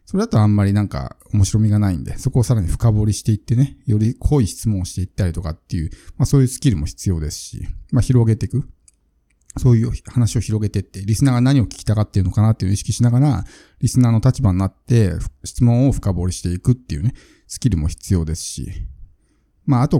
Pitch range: 95-135 Hz